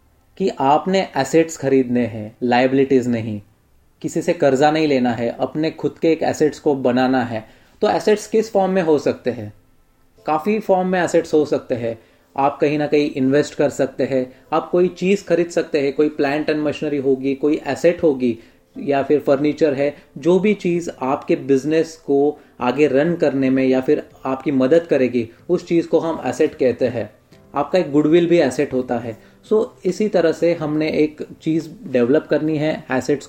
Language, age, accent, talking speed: Hindi, 30-49, native, 185 wpm